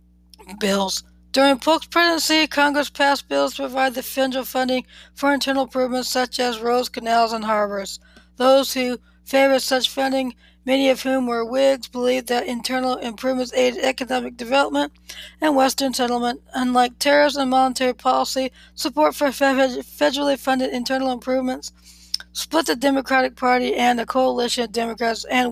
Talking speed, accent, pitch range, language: 145 wpm, American, 235-270 Hz, English